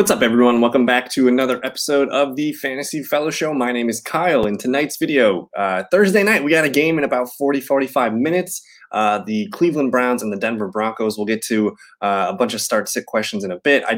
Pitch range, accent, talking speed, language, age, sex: 110-140 Hz, American, 225 wpm, English, 20-39, male